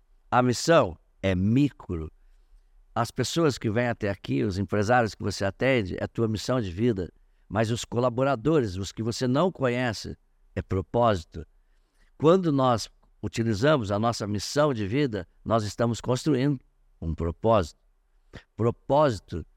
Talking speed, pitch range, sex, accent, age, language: 140 wpm, 95-125 Hz, male, Brazilian, 60-79, Portuguese